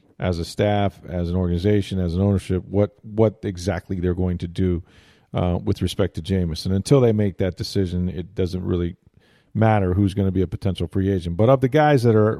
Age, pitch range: 40-59, 95-115 Hz